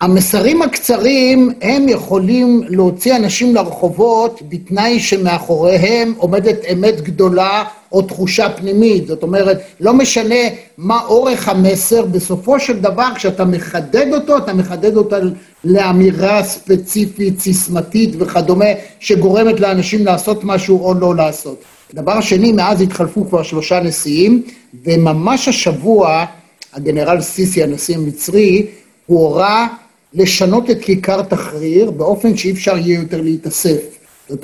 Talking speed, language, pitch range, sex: 120 wpm, Hebrew, 175-225 Hz, male